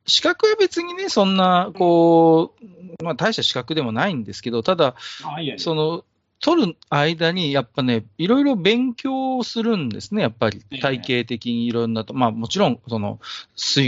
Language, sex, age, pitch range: Japanese, male, 40-59, 115-160 Hz